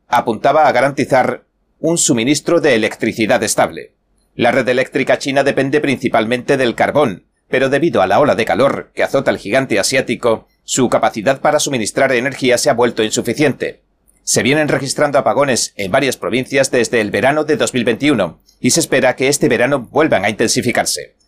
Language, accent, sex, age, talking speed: Spanish, Spanish, male, 40-59, 165 wpm